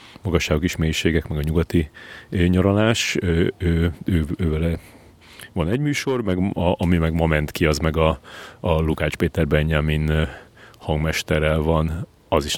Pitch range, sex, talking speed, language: 85-100 Hz, male, 140 wpm, Hungarian